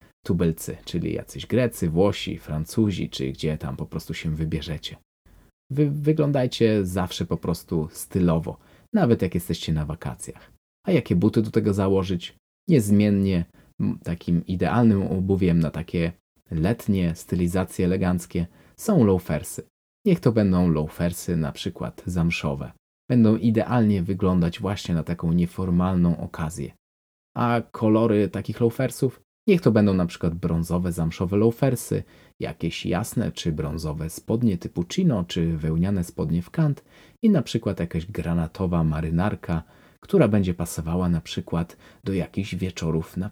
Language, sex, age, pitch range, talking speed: Polish, male, 20-39, 85-105 Hz, 130 wpm